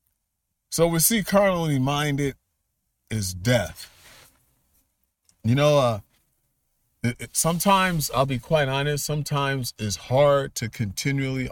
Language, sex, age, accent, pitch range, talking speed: English, male, 40-59, American, 95-125 Hz, 105 wpm